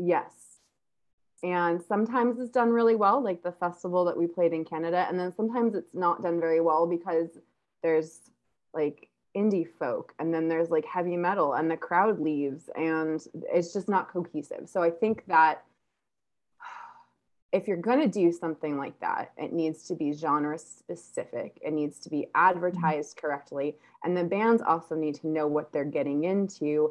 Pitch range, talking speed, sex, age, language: 160-190 Hz, 175 wpm, female, 20-39, English